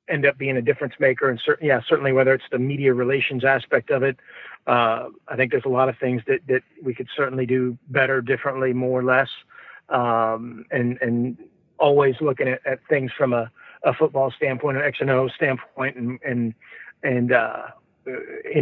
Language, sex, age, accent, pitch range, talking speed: English, male, 40-59, American, 130-145 Hz, 185 wpm